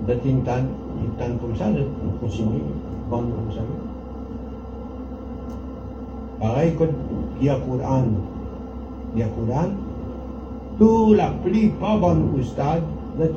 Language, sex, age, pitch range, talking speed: French, male, 60-79, 125-175 Hz, 160 wpm